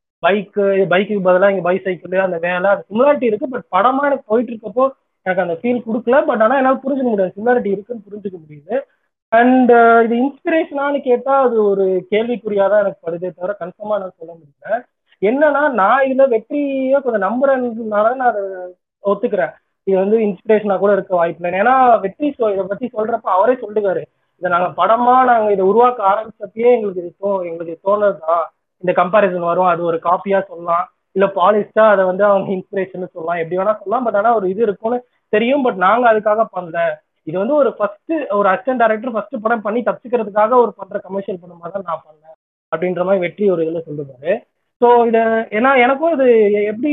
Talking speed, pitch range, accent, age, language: 170 wpm, 190-245 Hz, native, 20-39, Tamil